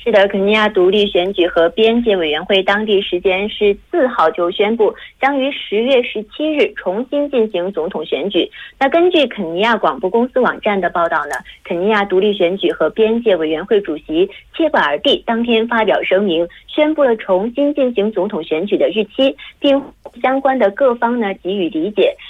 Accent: Chinese